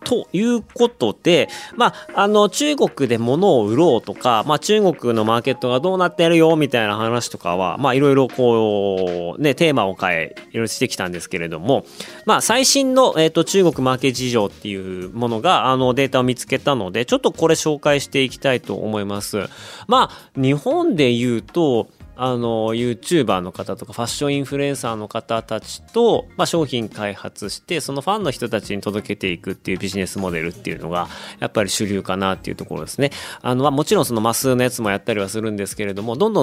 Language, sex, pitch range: Japanese, male, 105-150 Hz